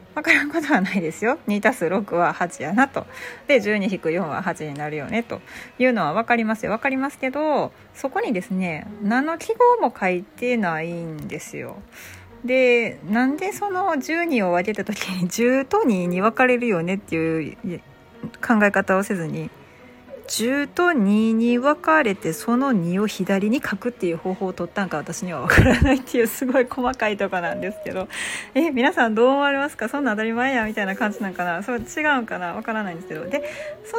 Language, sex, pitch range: Japanese, female, 190-275 Hz